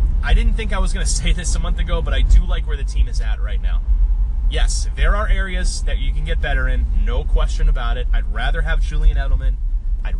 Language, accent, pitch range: English, American, 65-80 Hz